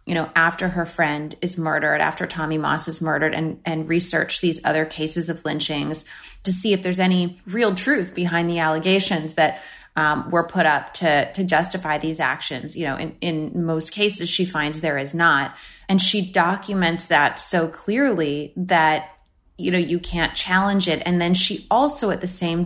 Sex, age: female, 30-49